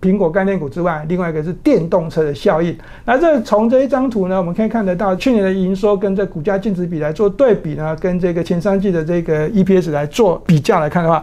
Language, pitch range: Chinese, 170-215 Hz